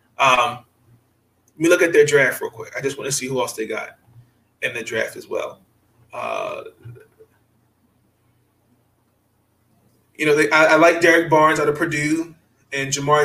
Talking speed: 170 wpm